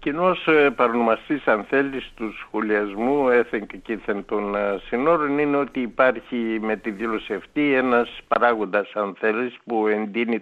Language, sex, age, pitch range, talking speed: Greek, male, 60-79, 105-140 Hz, 135 wpm